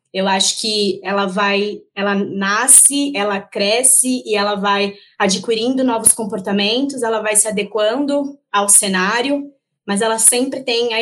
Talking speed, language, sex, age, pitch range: 140 wpm, Portuguese, female, 20-39, 190-245 Hz